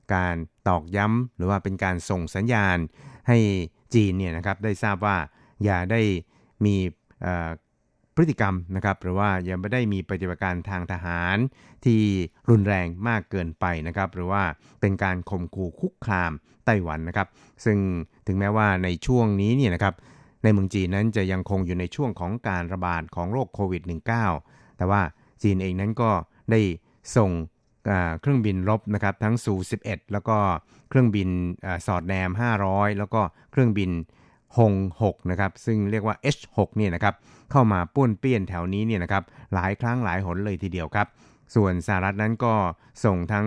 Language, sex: Thai, male